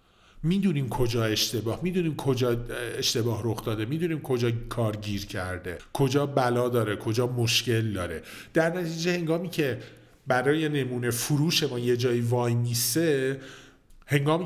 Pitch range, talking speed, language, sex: 110-145 Hz, 130 wpm, Persian, male